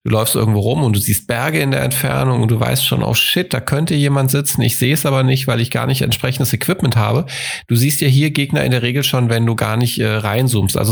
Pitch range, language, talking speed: 115-145 Hz, German, 270 wpm